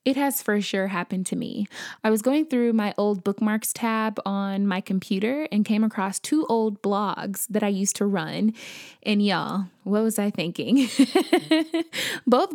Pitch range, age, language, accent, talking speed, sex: 200-240 Hz, 20-39, English, American, 170 wpm, female